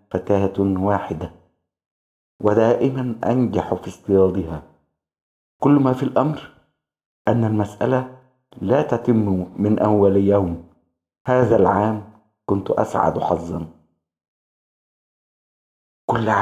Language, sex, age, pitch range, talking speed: Arabic, male, 50-69, 85-110 Hz, 85 wpm